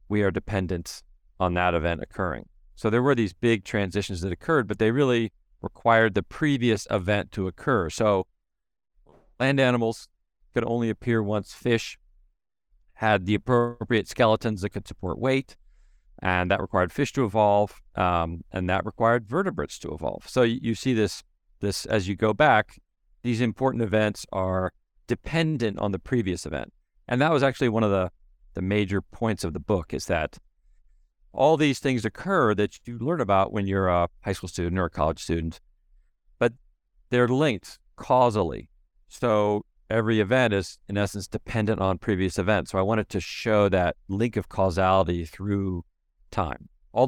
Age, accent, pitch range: 40-59, American, 95-115 Hz